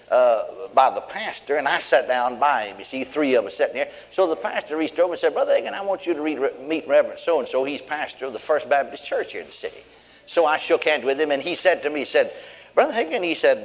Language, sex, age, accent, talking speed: English, male, 60-79, American, 280 wpm